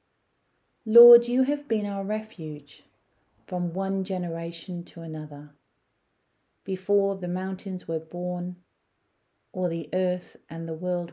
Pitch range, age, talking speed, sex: 155-195 Hz, 40-59, 120 wpm, female